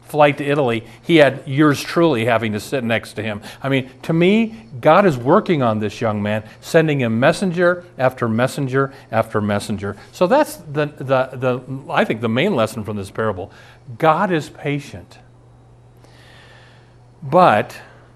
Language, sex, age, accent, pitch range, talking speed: English, male, 40-59, American, 115-145 Hz, 160 wpm